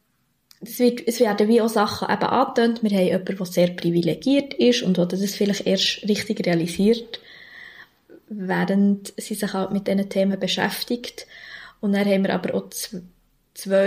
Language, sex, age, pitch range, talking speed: German, female, 20-39, 190-220 Hz, 155 wpm